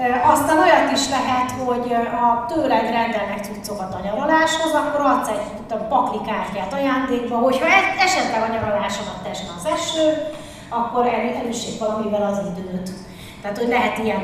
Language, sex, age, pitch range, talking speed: Hungarian, female, 30-49, 175-230 Hz, 135 wpm